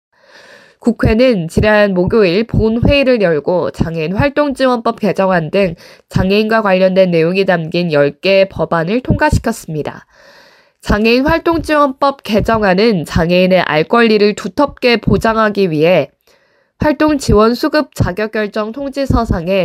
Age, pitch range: 20-39, 185-235 Hz